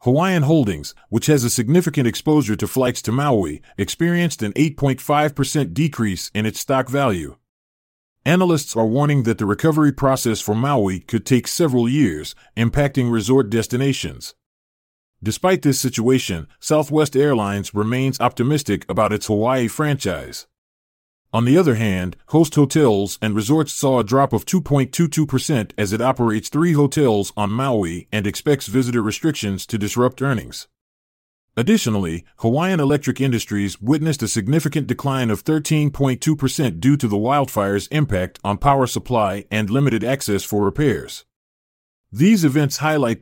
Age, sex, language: 30-49, male, English